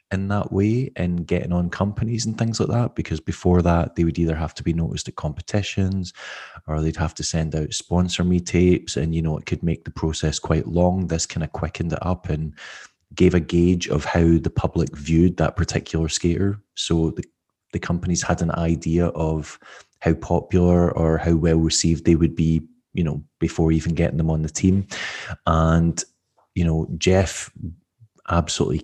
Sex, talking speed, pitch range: male, 190 wpm, 80-90 Hz